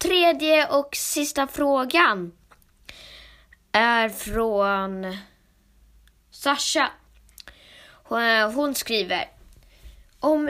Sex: female